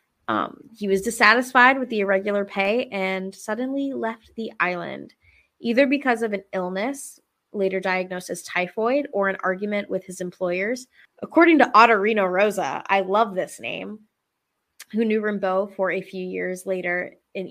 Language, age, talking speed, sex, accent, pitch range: English, 20-39, 155 wpm, female, American, 185-235 Hz